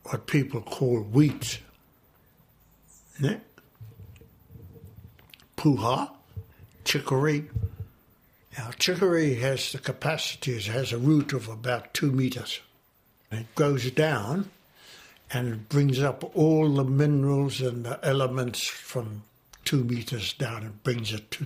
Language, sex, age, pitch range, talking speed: English, male, 60-79, 115-140 Hz, 110 wpm